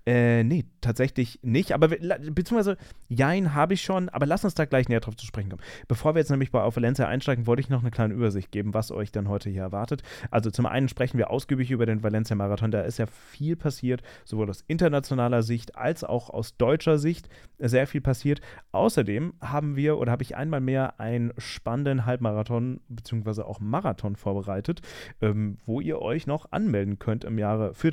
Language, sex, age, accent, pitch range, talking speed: German, male, 30-49, German, 110-145 Hz, 195 wpm